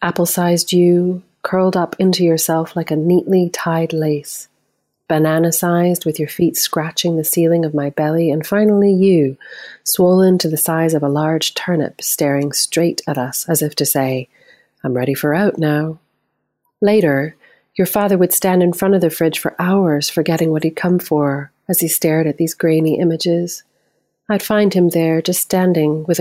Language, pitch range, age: English, 150-180 Hz, 30-49